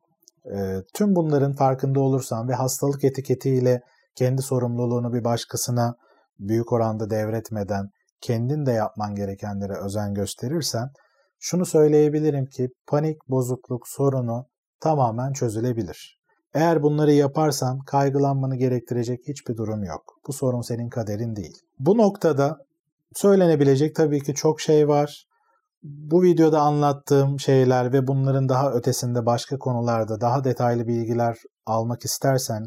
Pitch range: 120-145 Hz